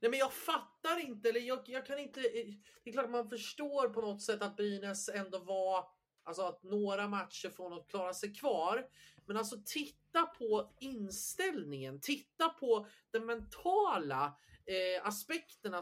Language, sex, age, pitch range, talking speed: Swedish, male, 30-49, 185-235 Hz, 160 wpm